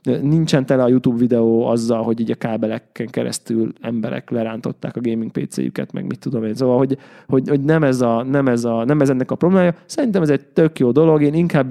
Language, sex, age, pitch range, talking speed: Hungarian, male, 20-39, 120-140 Hz, 220 wpm